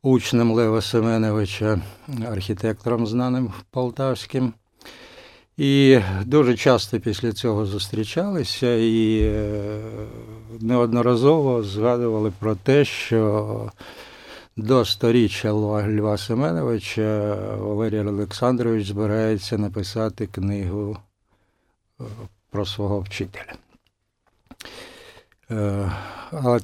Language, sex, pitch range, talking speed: Ukrainian, male, 105-120 Hz, 70 wpm